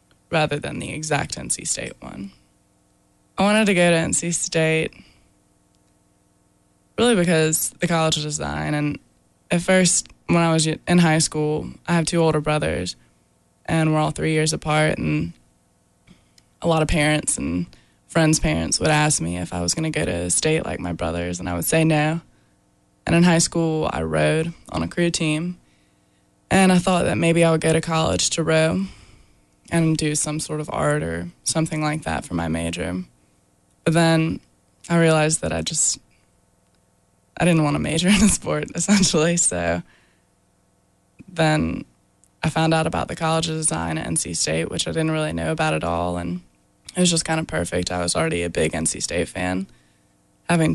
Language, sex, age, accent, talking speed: English, female, 20-39, American, 185 wpm